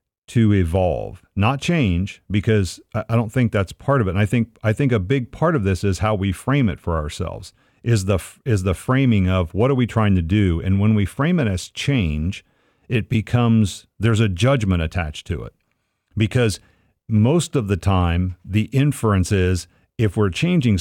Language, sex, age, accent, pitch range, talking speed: English, male, 50-69, American, 95-120 Hz, 195 wpm